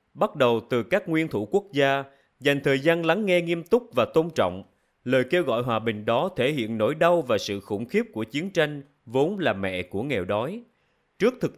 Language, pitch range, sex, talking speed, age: Vietnamese, 115-170 Hz, male, 225 wpm, 20-39